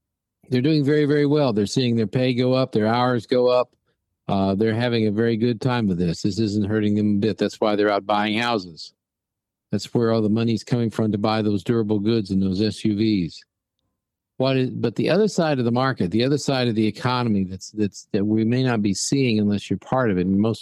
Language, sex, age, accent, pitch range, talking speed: English, male, 50-69, American, 105-125 Hz, 235 wpm